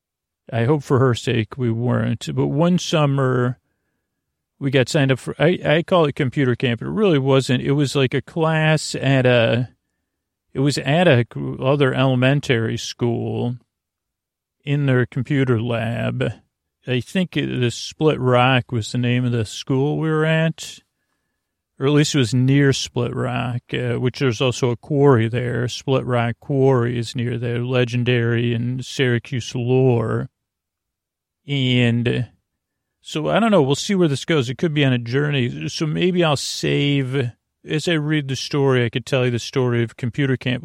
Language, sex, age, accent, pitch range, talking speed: English, male, 40-59, American, 120-145 Hz, 170 wpm